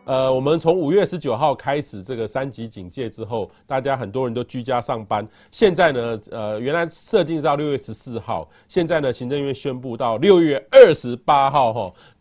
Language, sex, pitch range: Chinese, male, 115-165 Hz